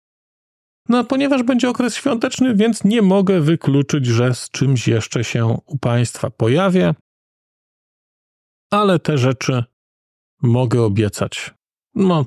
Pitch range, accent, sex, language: 115-150 Hz, native, male, Polish